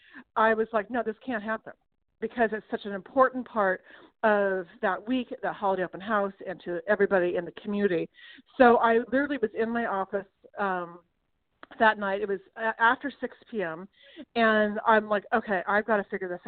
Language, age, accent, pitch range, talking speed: English, 40-59, American, 210-250 Hz, 180 wpm